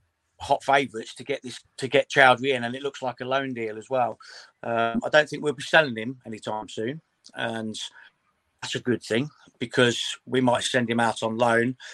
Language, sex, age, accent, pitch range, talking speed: English, male, 40-59, British, 110-130 Hz, 205 wpm